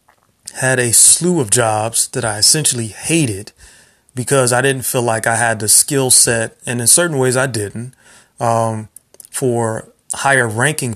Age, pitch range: 30-49, 110-130 Hz